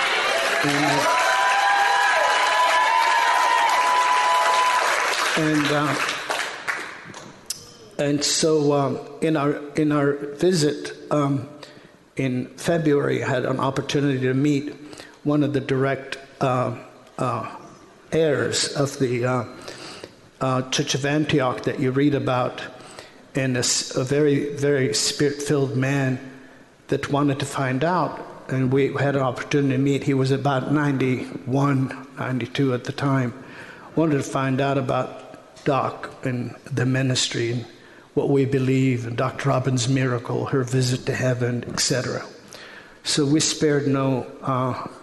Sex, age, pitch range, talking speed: male, 60-79, 130-145 Hz, 125 wpm